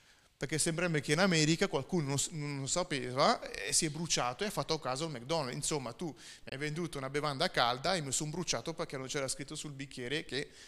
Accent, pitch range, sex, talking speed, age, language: native, 145-185 Hz, male, 215 wpm, 30-49, Italian